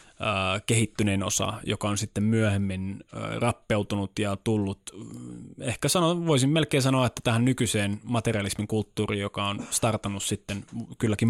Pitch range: 105-125 Hz